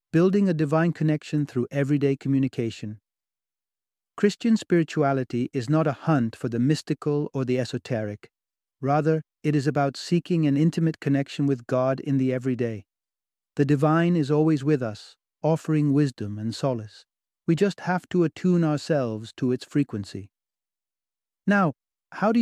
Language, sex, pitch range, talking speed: English, male, 115-150 Hz, 145 wpm